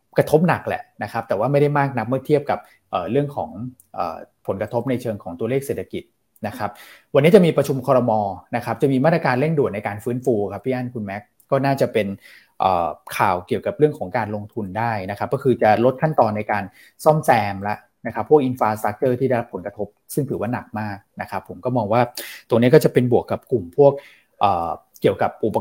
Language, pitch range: Thai, 105-140 Hz